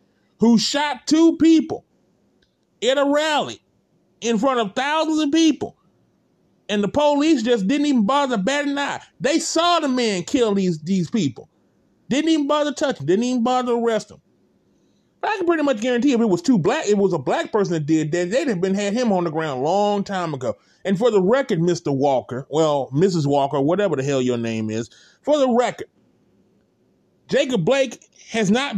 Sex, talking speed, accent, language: male, 200 wpm, American, English